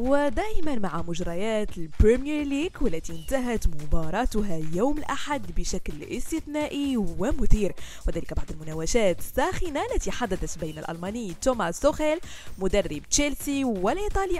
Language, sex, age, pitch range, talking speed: French, female, 20-39, 190-280 Hz, 110 wpm